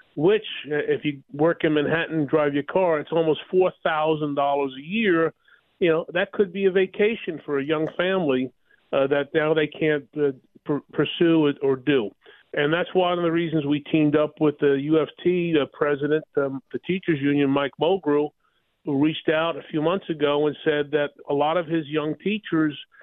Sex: male